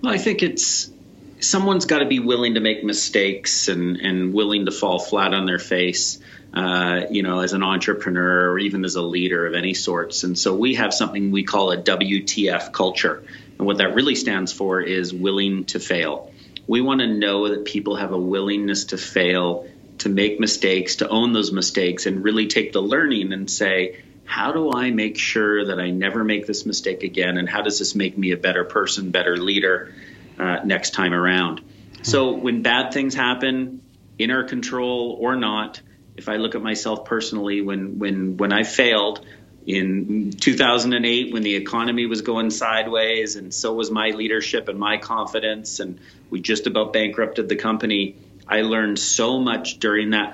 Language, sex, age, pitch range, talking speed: English, male, 30-49, 95-115 Hz, 185 wpm